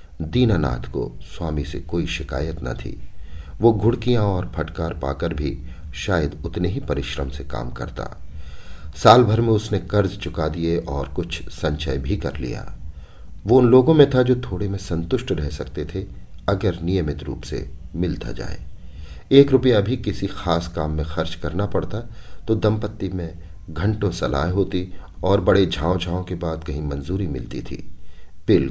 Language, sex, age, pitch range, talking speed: Hindi, male, 50-69, 75-95 Hz, 165 wpm